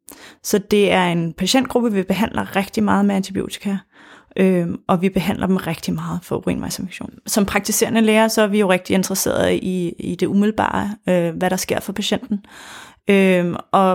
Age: 30-49